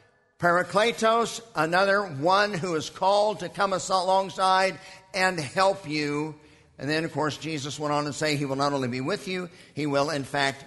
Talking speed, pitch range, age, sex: 180 wpm, 160-200 Hz, 50-69, male